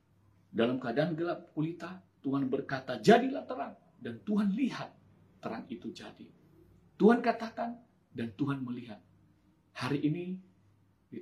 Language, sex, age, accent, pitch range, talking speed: Indonesian, male, 40-59, native, 125-185 Hz, 120 wpm